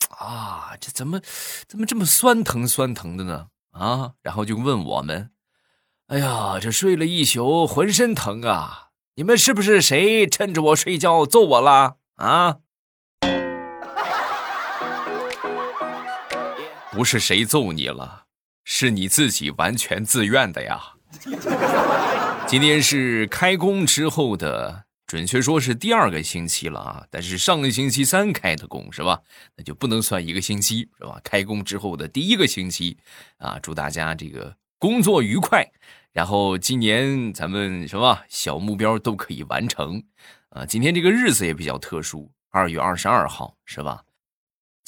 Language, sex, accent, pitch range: Chinese, male, native, 90-150 Hz